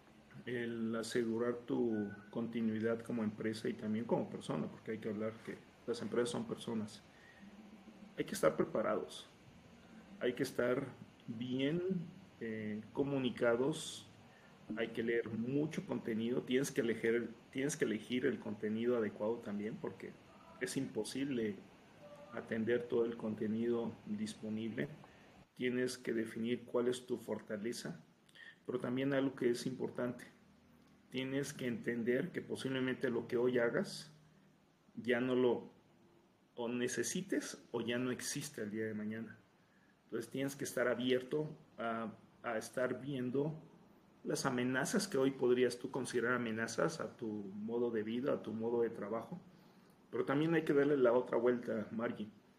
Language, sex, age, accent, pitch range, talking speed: Spanish, male, 40-59, Mexican, 115-140 Hz, 140 wpm